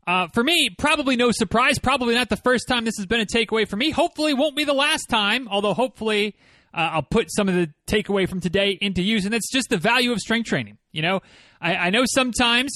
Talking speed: 240 wpm